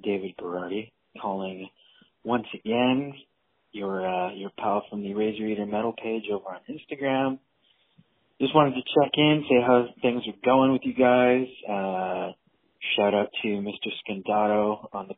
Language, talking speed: English, 155 wpm